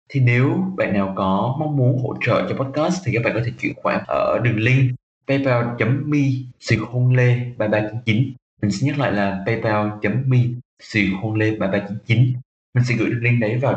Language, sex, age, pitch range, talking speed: Vietnamese, male, 20-39, 100-130 Hz, 155 wpm